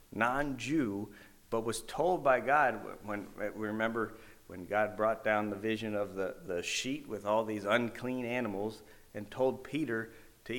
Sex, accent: male, American